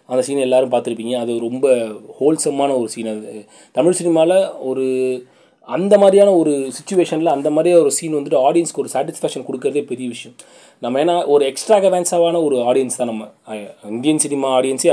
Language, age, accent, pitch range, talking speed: Tamil, 30-49, native, 125-170 Hz, 170 wpm